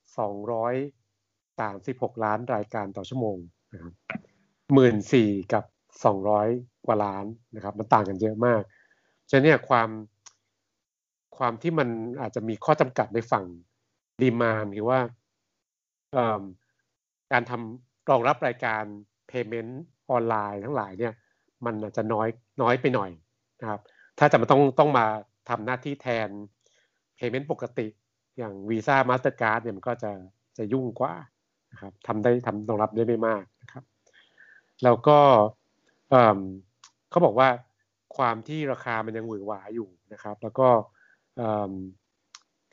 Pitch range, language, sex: 105-125 Hz, Thai, male